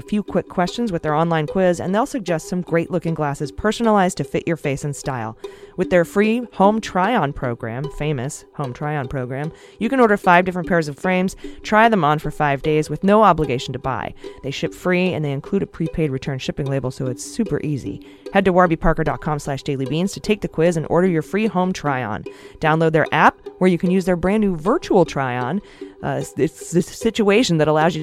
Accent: American